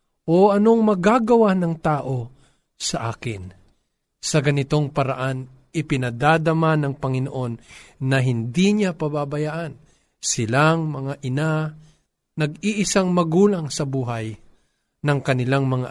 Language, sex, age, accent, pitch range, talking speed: Filipino, male, 50-69, native, 115-155 Hz, 100 wpm